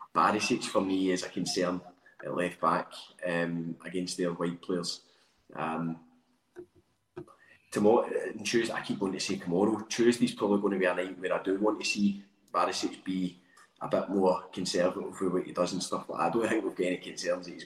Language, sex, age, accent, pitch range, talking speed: English, male, 20-39, British, 90-105 Hz, 195 wpm